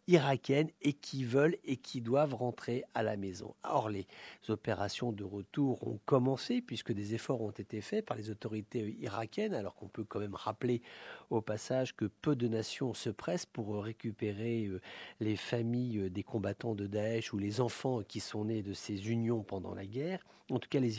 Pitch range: 110-140 Hz